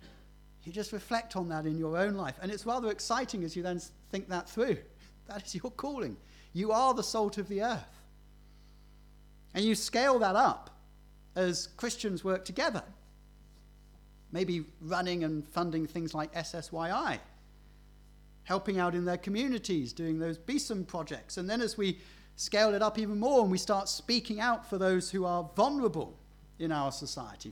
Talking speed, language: 170 wpm, English